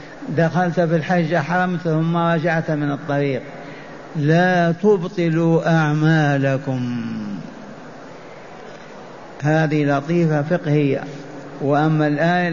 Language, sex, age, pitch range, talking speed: Arabic, male, 60-79, 155-185 Hz, 75 wpm